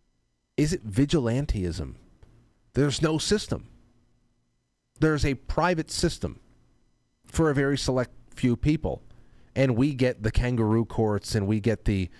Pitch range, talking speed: 105-130 Hz, 130 wpm